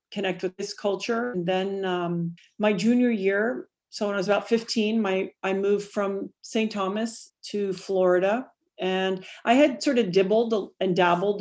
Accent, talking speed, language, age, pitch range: American, 170 wpm, English, 40-59, 175-210 Hz